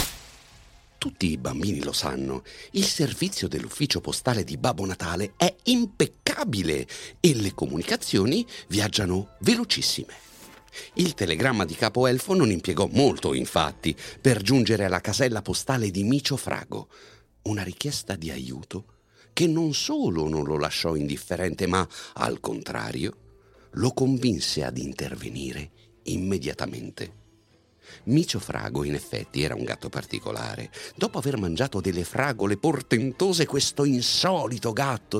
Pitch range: 95-150 Hz